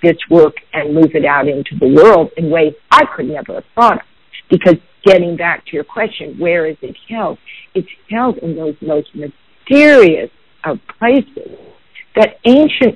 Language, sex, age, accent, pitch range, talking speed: English, female, 50-69, American, 160-220 Hz, 170 wpm